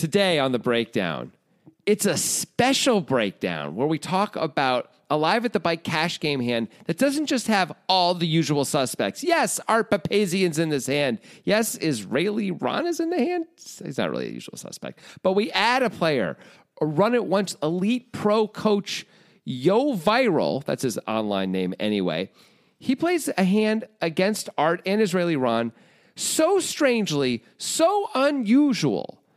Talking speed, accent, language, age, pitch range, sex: 160 wpm, American, English, 40-59, 145-220 Hz, male